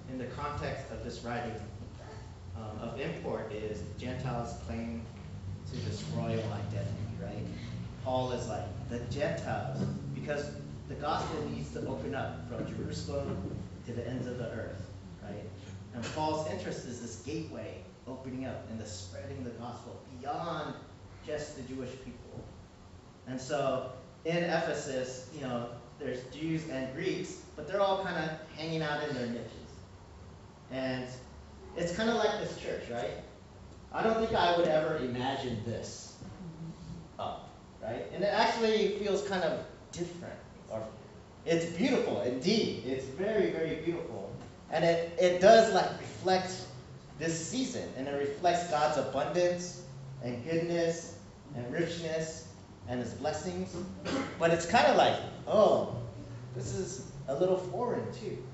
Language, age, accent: English, 40-59, American